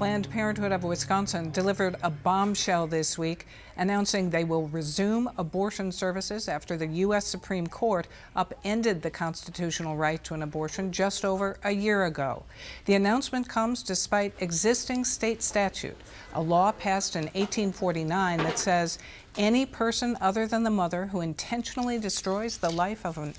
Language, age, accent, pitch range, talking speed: English, 60-79, American, 170-215 Hz, 150 wpm